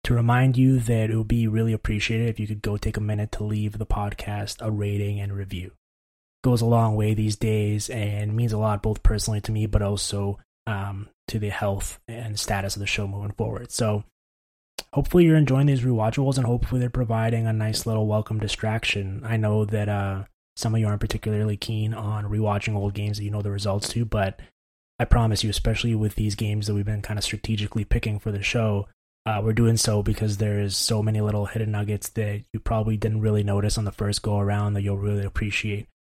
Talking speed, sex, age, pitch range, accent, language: 220 wpm, male, 20-39, 100-110 Hz, American, English